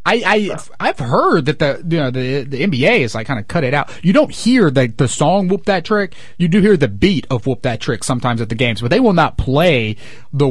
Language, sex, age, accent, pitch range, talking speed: English, male, 30-49, American, 140-190 Hz, 265 wpm